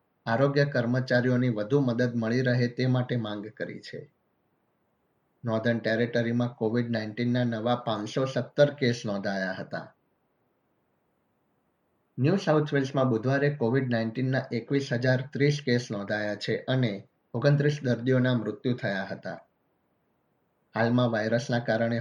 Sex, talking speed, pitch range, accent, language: male, 85 wpm, 115-130 Hz, native, Gujarati